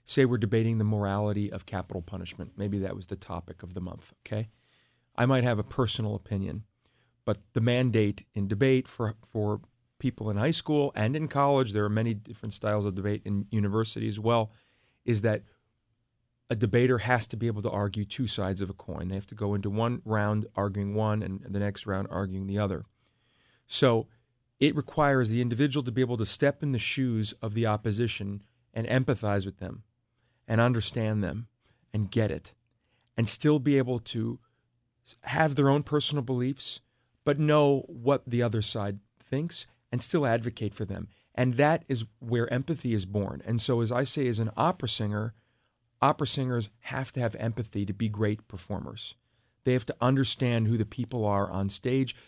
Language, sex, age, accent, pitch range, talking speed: English, male, 40-59, American, 105-125 Hz, 185 wpm